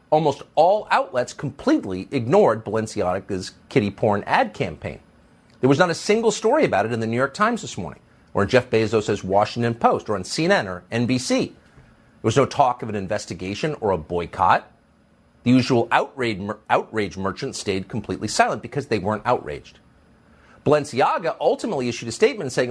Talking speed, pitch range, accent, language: 170 wpm, 105-140 Hz, American, English